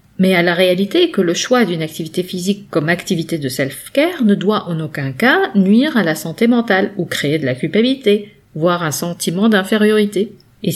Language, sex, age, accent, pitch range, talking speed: French, female, 50-69, French, 170-210 Hz, 190 wpm